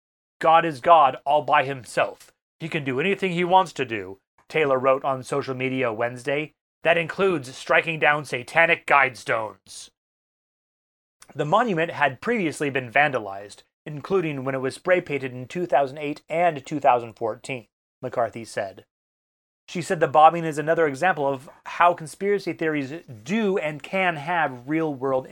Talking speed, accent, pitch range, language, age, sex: 140 wpm, American, 130-170 Hz, English, 30-49, male